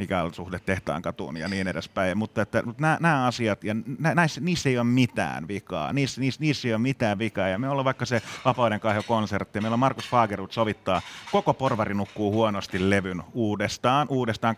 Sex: male